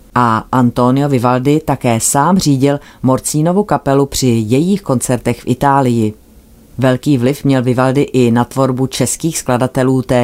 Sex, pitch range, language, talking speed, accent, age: female, 125-150 Hz, Czech, 135 wpm, native, 30-49